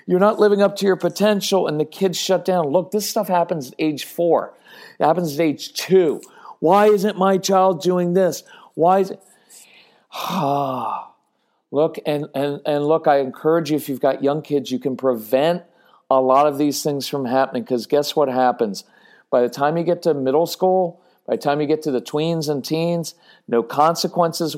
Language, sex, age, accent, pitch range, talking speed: English, male, 50-69, American, 135-170 Hz, 195 wpm